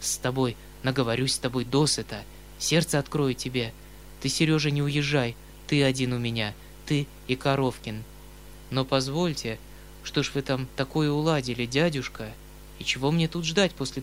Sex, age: male, 20-39